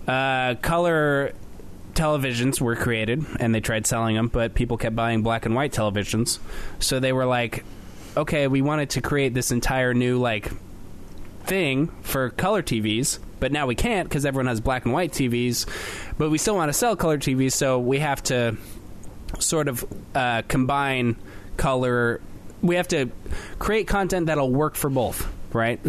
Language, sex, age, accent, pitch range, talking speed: English, male, 20-39, American, 110-140 Hz, 170 wpm